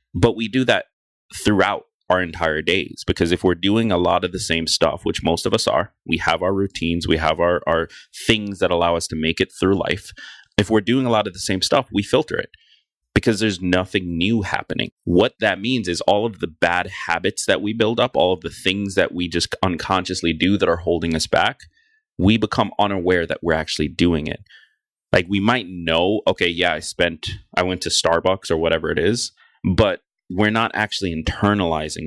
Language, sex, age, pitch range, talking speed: English, male, 30-49, 85-105 Hz, 210 wpm